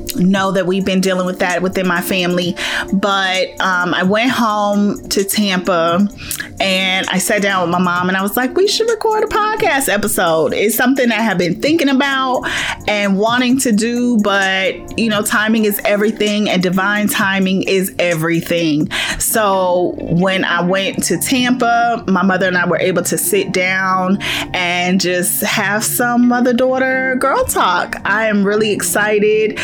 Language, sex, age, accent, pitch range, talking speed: English, female, 30-49, American, 175-215 Hz, 170 wpm